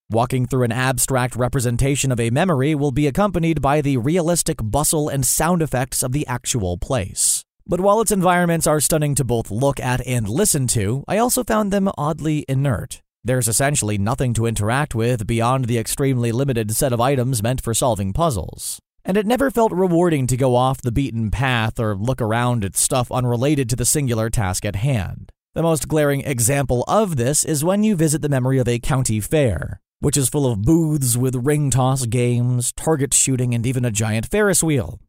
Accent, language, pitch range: American, English, 115-150 Hz